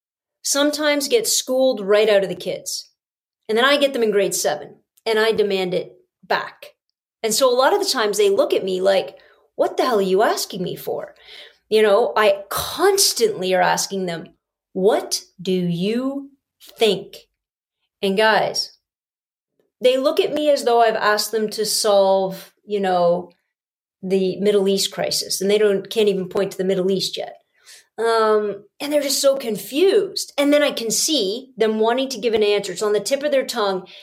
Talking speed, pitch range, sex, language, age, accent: 185 wpm, 190-240 Hz, female, English, 40-59, American